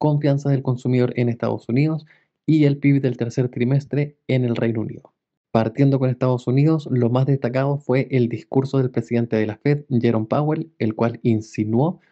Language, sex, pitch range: Spanish, male, 120-145 Hz